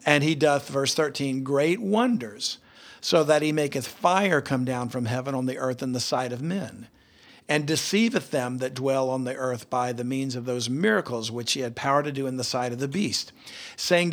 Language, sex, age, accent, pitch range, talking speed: English, male, 50-69, American, 130-155 Hz, 215 wpm